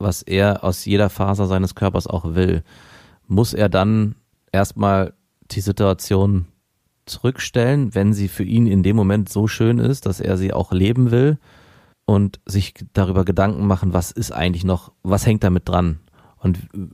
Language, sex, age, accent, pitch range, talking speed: German, male, 30-49, German, 95-110 Hz, 165 wpm